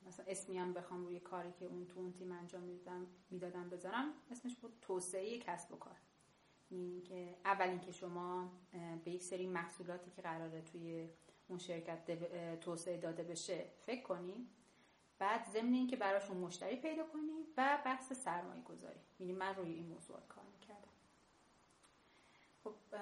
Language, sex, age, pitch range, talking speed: Persian, female, 30-49, 175-220 Hz, 150 wpm